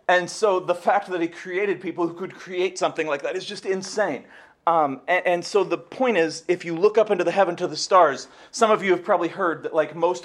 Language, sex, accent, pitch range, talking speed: English, male, American, 170-210 Hz, 250 wpm